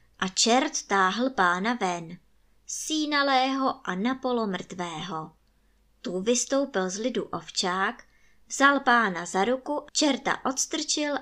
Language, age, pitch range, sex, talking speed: Czech, 20-39, 185-260 Hz, male, 105 wpm